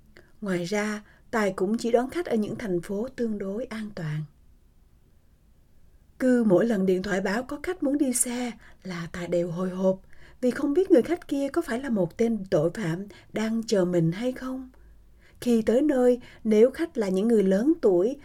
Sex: female